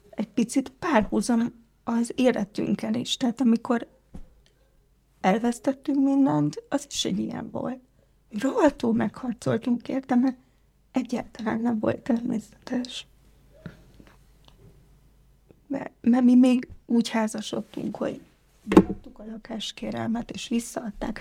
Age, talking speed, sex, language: 30-49, 100 wpm, female, Hungarian